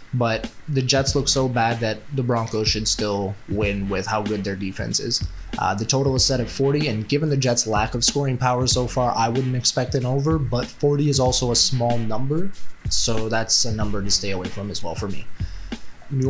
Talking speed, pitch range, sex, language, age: 220 wpm, 110-130 Hz, male, English, 20-39